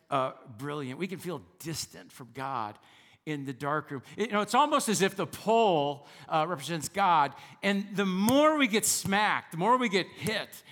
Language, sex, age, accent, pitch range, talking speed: English, male, 50-69, American, 135-180 Hz, 190 wpm